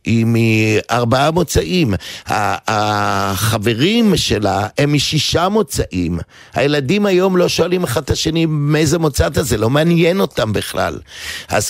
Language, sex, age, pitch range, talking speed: Hebrew, male, 50-69, 105-155 Hz, 120 wpm